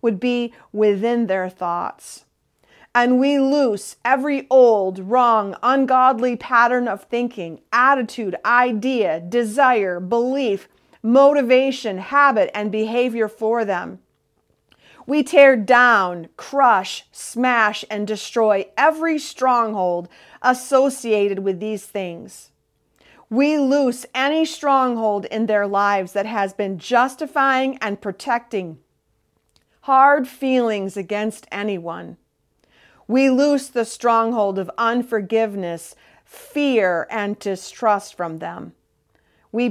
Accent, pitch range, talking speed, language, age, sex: American, 200-250 Hz, 100 wpm, English, 40-59, female